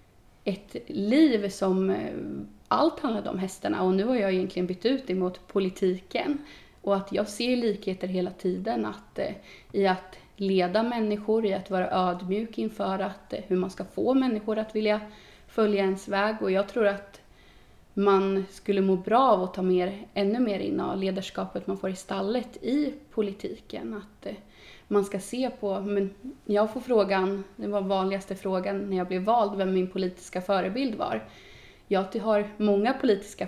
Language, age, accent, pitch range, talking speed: Swedish, 30-49, native, 185-210 Hz, 175 wpm